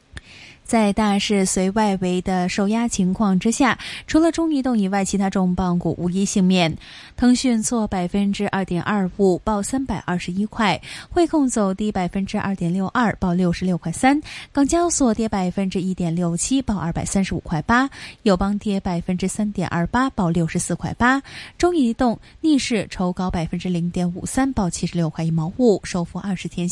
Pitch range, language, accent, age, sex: 180-225 Hz, Chinese, native, 20-39, female